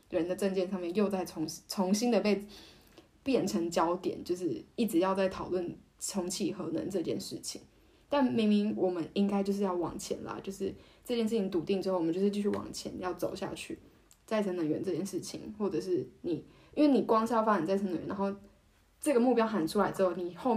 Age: 10-29